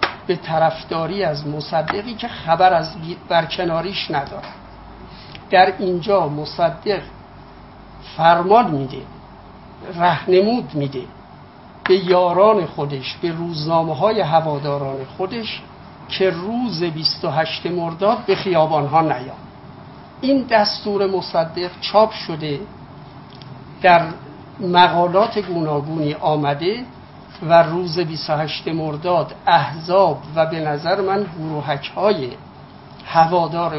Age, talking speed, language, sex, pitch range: 60-79, 90 wpm, Persian, male, 155-195 Hz